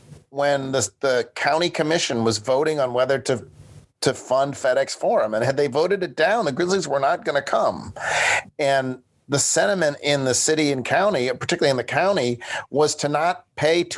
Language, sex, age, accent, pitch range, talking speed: English, male, 40-59, American, 120-145 Hz, 185 wpm